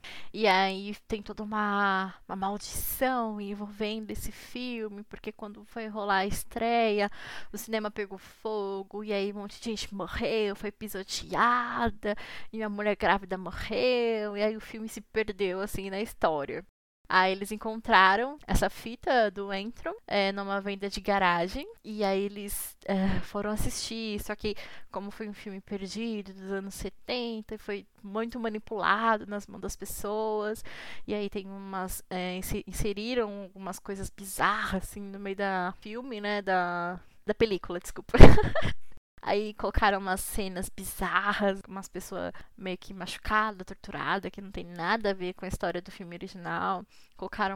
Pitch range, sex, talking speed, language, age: 190-220 Hz, female, 155 wpm, Portuguese, 10-29